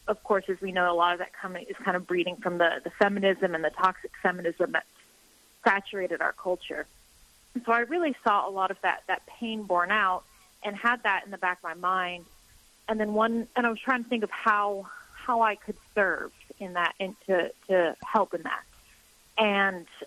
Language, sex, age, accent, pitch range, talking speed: English, female, 30-49, American, 180-210 Hz, 210 wpm